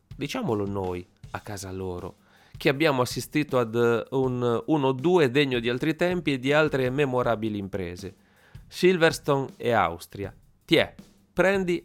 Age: 30-49